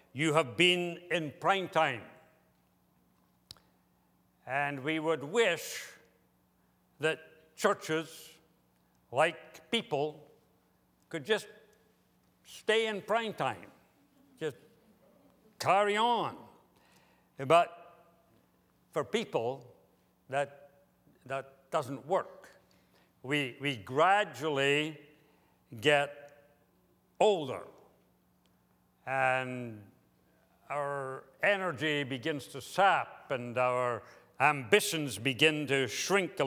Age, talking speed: 60-79, 80 wpm